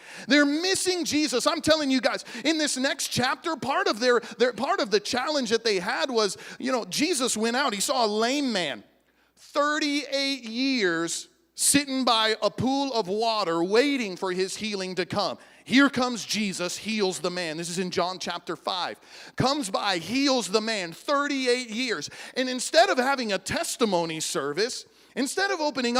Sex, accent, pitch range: male, American, 180-275 Hz